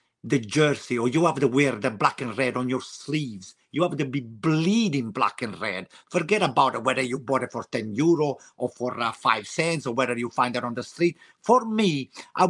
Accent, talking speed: native, 230 wpm